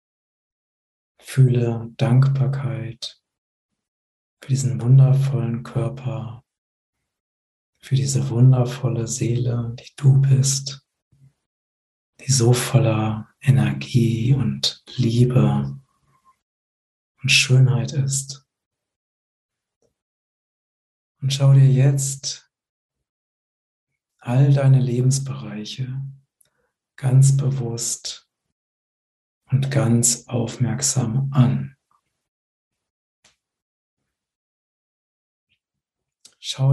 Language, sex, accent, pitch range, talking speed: German, male, German, 115-135 Hz, 60 wpm